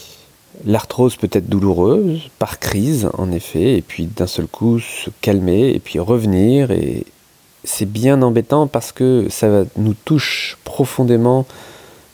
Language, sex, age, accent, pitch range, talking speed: French, male, 30-49, French, 90-120 Hz, 145 wpm